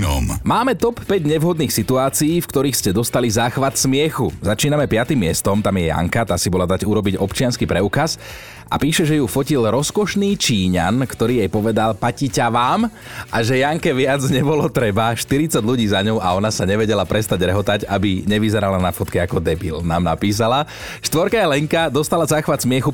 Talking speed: 170 wpm